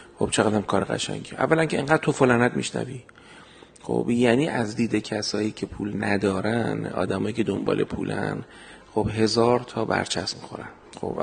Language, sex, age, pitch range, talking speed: Persian, male, 40-59, 95-120 Hz, 155 wpm